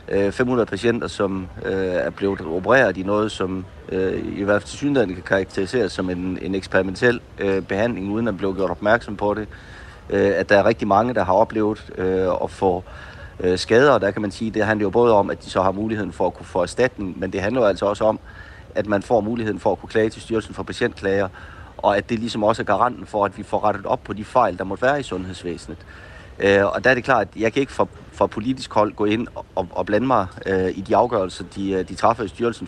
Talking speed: 245 wpm